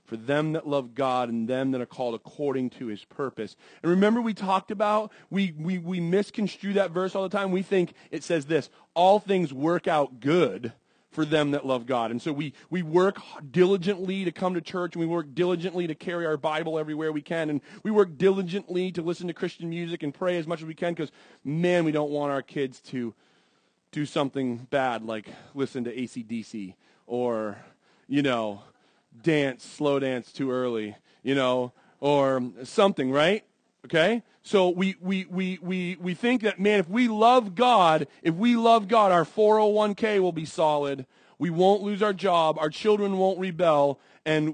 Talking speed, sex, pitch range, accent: 190 wpm, male, 135-190 Hz, American